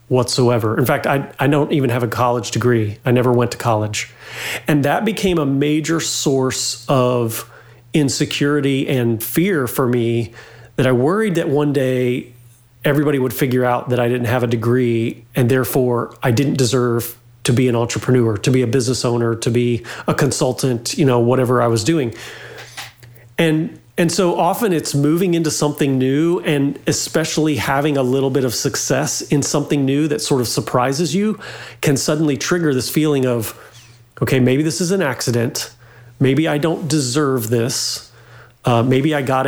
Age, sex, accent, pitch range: 30-49, male, American, 120-150 Hz